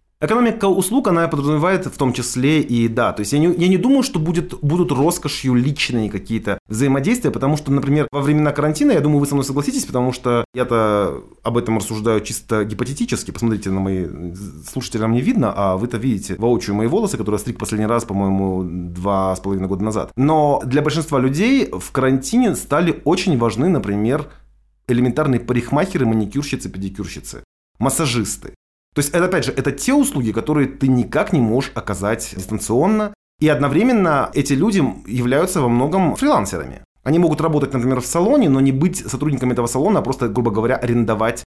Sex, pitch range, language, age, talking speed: male, 110-155 Hz, Russian, 20-39, 175 wpm